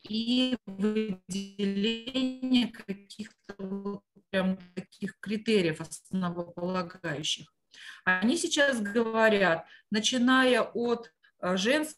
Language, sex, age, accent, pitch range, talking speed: Russian, female, 30-49, native, 190-235 Hz, 65 wpm